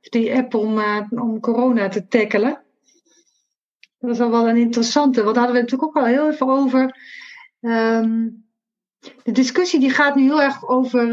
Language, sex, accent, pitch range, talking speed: Dutch, female, Dutch, 205-250 Hz, 180 wpm